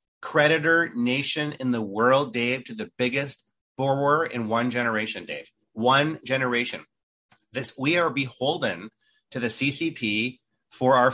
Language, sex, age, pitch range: English, male, 30-49, 115-150 Hz